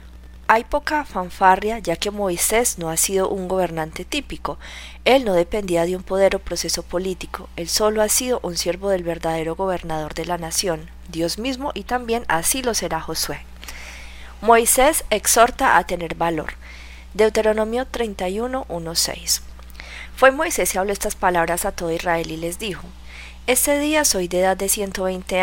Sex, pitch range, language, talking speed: female, 165-210 Hz, Spanish, 160 wpm